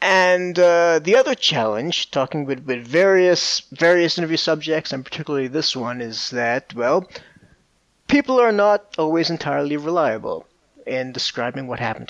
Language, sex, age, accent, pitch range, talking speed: English, male, 30-49, American, 130-170 Hz, 145 wpm